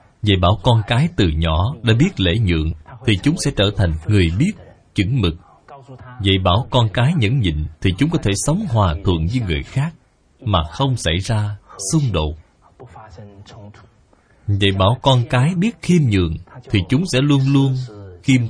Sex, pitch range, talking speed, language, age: male, 90-130 Hz, 175 wpm, Vietnamese, 20-39